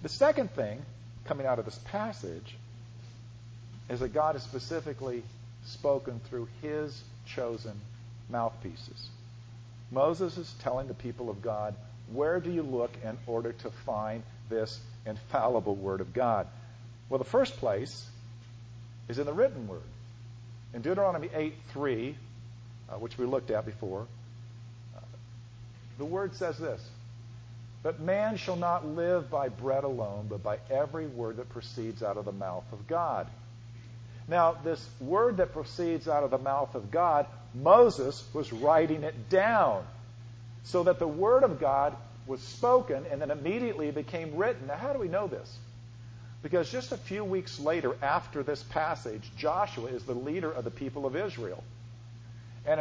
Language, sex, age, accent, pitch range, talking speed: English, male, 50-69, American, 115-150 Hz, 155 wpm